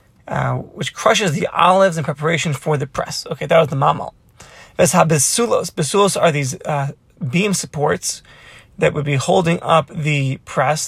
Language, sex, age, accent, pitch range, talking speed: English, male, 30-49, American, 145-180 Hz, 165 wpm